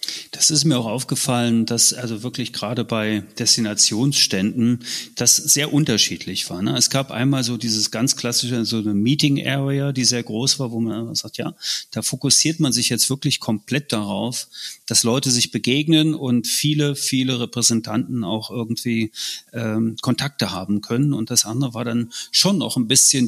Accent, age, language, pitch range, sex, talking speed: German, 30-49, German, 110-135 Hz, male, 160 wpm